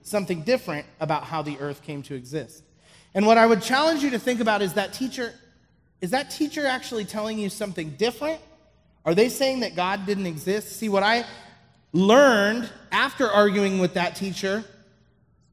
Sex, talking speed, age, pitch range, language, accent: male, 175 wpm, 30-49, 170-230 Hz, English, American